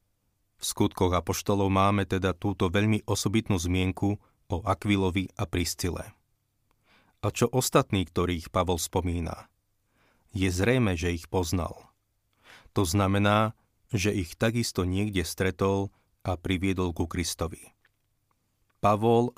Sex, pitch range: male, 90-105 Hz